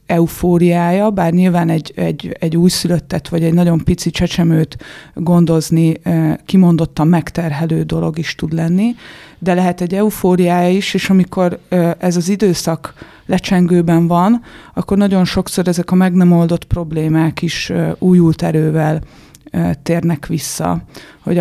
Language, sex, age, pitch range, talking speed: Hungarian, female, 30-49, 165-180 Hz, 130 wpm